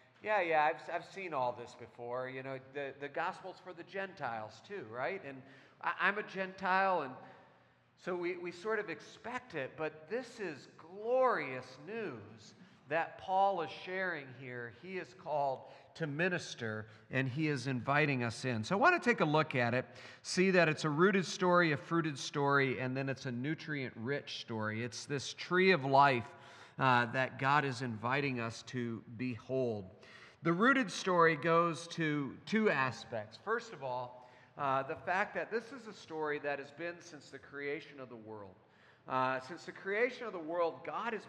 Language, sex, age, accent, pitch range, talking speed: English, male, 40-59, American, 130-180 Hz, 180 wpm